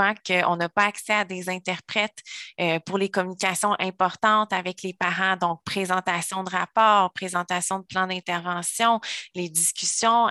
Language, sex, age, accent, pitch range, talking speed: French, female, 20-39, Canadian, 180-210 Hz, 140 wpm